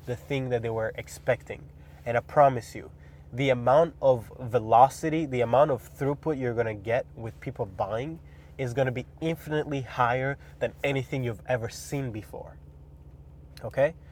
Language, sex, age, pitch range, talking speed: English, male, 20-39, 100-140 Hz, 155 wpm